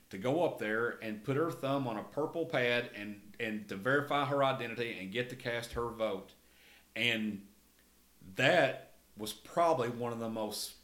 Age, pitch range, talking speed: 40-59, 115-135 Hz, 175 wpm